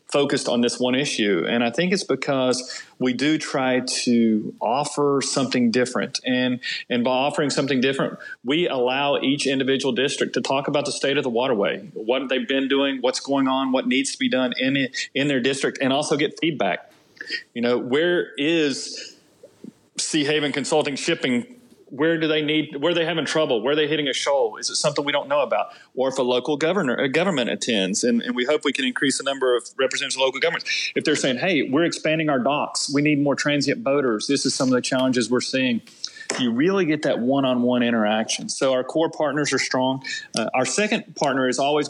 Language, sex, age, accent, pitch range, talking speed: English, male, 40-59, American, 130-155 Hz, 215 wpm